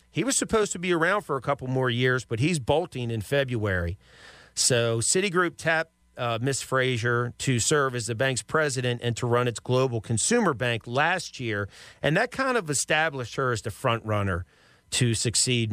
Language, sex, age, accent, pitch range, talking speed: English, male, 40-59, American, 110-140 Hz, 185 wpm